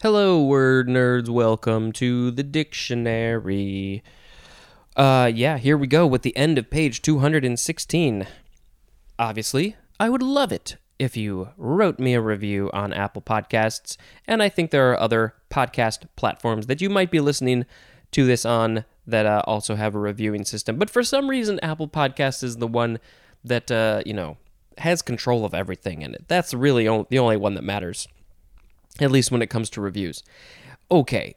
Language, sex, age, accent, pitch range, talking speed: English, male, 20-39, American, 110-160 Hz, 170 wpm